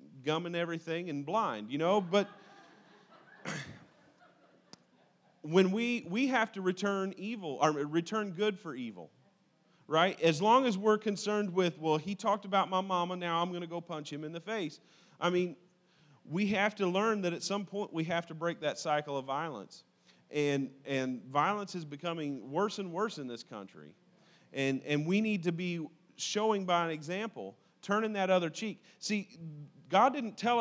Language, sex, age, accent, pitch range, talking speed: English, male, 40-59, American, 155-195 Hz, 175 wpm